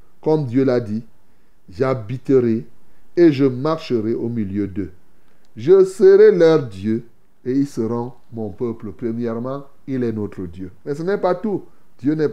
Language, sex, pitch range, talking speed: French, male, 120-165 Hz, 155 wpm